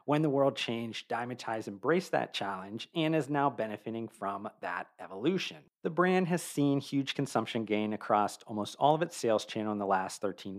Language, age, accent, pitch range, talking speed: English, 40-59, American, 110-140 Hz, 185 wpm